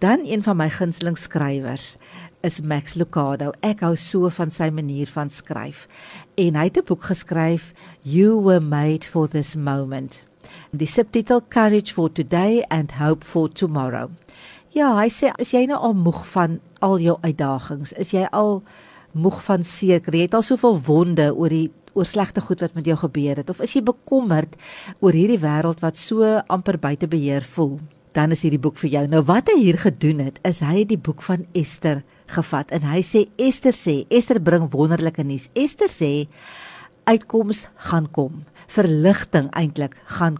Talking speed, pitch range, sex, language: 175 wpm, 155-195 Hz, female, English